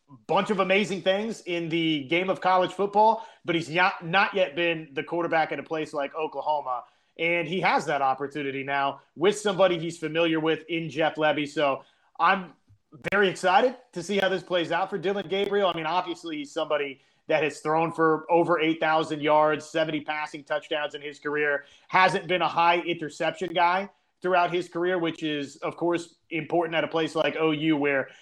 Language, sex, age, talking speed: English, male, 30-49, 185 wpm